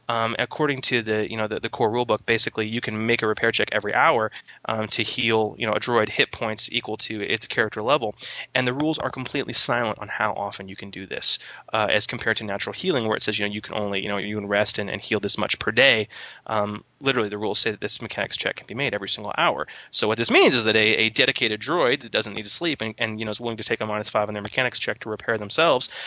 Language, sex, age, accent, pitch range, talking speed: English, male, 20-39, American, 105-125 Hz, 275 wpm